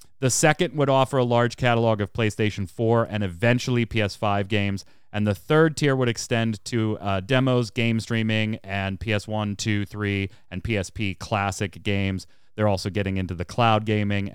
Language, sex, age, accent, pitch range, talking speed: English, male, 30-49, American, 100-130 Hz, 165 wpm